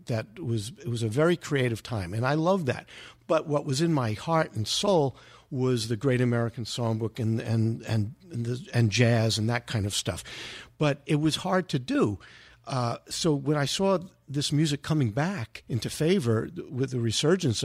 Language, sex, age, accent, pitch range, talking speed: English, male, 50-69, American, 115-145 Hz, 195 wpm